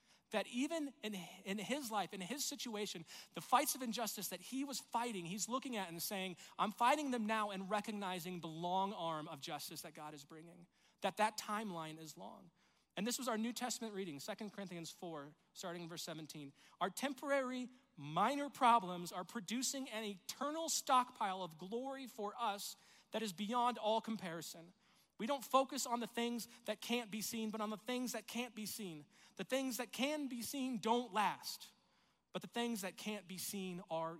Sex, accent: male, American